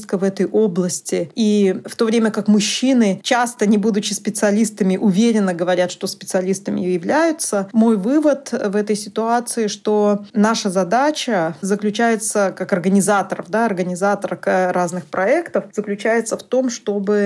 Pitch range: 195-230 Hz